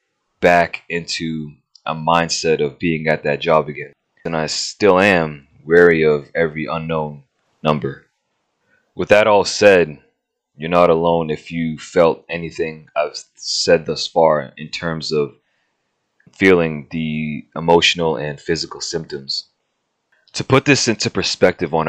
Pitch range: 75-85 Hz